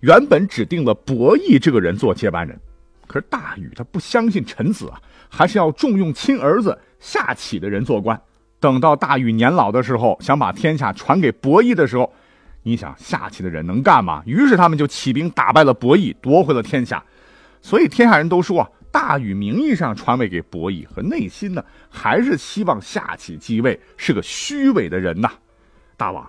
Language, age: Chinese, 50-69